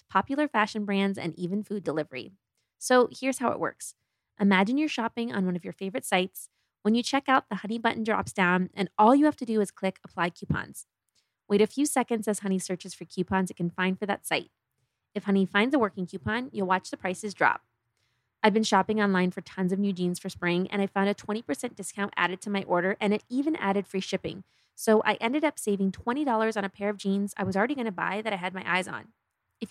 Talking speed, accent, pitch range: 235 wpm, American, 185-225 Hz